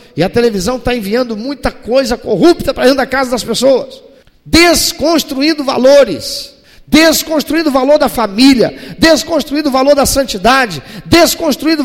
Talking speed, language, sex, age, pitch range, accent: 135 wpm, Portuguese, male, 50-69, 185-285 Hz, Brazilian